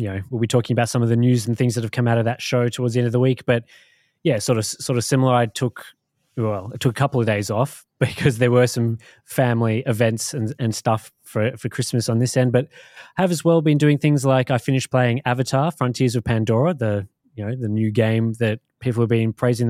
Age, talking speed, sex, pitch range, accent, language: 20-39, 260 wpm, male, 115-150 Hz, Australian, English